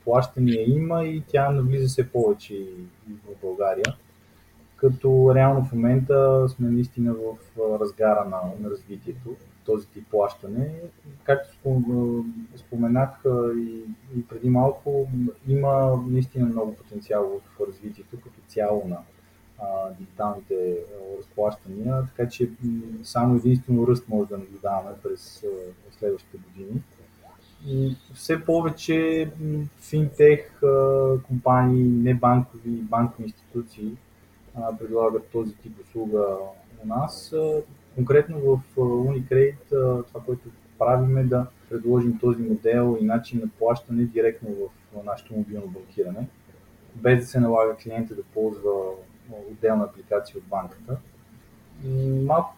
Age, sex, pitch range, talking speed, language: 20-39, male, 110-130 Hz, 110 wpm, Bulgarian